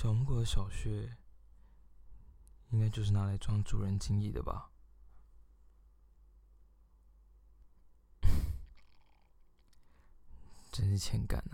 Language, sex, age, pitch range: Chinese, male, 20-39, 75-100 Hz